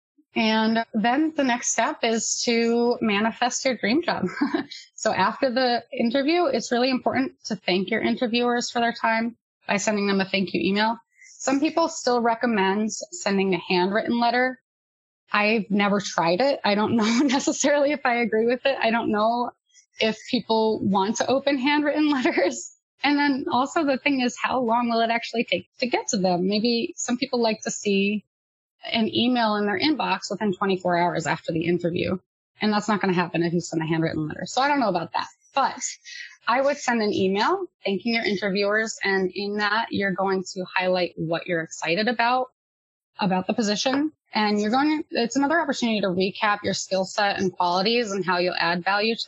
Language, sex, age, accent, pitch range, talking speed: English, female, 20-39, American, 190-250 Hz, 190 wpm